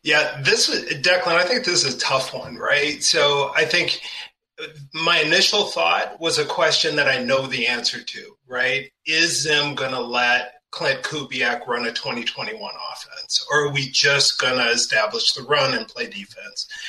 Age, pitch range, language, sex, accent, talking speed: 30-49, 130-180 Hz, English, male, American, 180 wpm